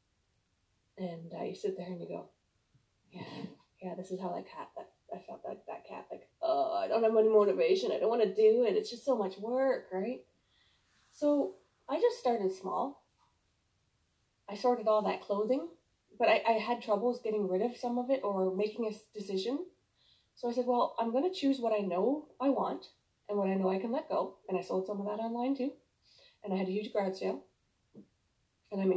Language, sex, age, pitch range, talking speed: English, female, 20-39, 200-255 Hz, 215 wpm